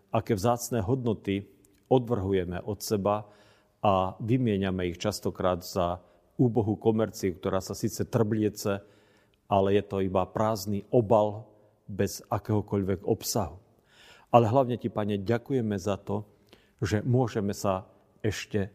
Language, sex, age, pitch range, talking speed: Slovak, male, 50-69, 100-115 Hz, 120 wpm